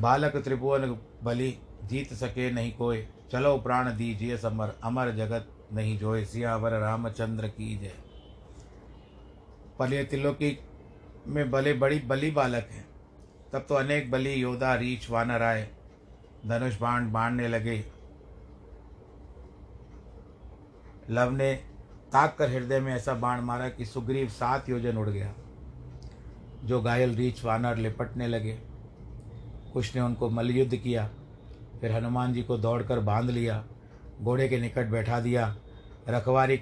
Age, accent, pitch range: 50-69, native, 110-125 Hz